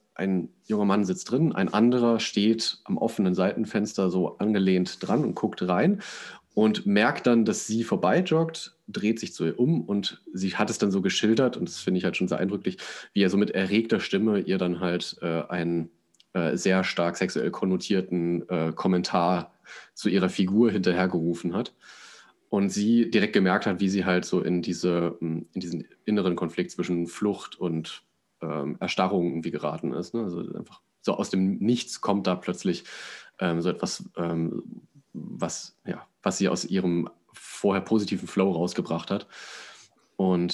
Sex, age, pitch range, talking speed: male, 30-49, 85-110 Hz, 165 wpm